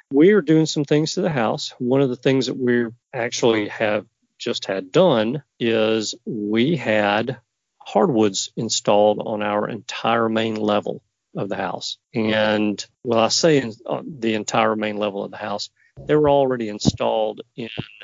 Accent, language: American, English